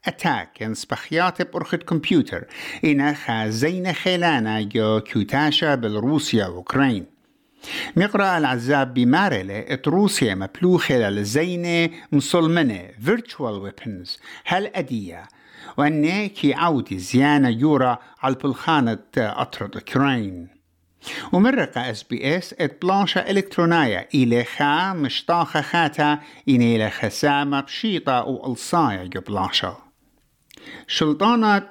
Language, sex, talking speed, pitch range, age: English, male, 80 wpm, 120-175 Hz, 60-79